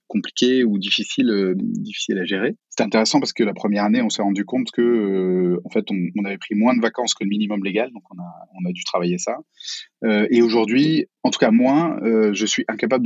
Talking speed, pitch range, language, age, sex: 240 wpm, 100-145 Hz, French, 30-49, male